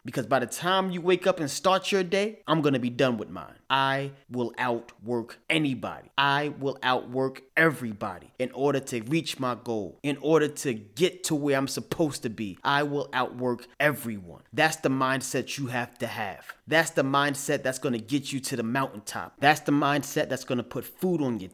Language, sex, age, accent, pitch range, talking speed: English, male, 30-49, American, 130-175 Hz, 200 wpm